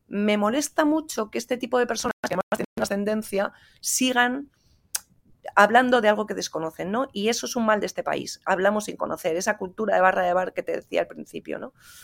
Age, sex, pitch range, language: 30-49, female, 180-225 Hz, Spanish